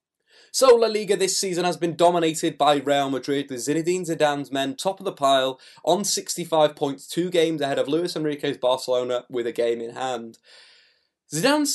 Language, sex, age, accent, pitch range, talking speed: English, male, 20-39, British, 125-165 Hz, 180 wpm